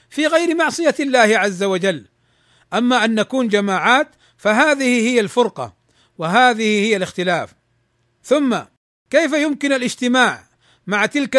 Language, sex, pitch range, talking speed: Arabic, male, 195-255 Hz, 115 wpm